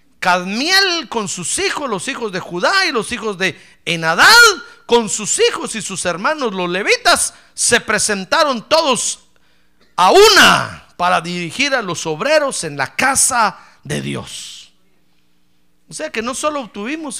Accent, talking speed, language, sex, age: Mexican, 145 wpm, Spanish, male, 50-69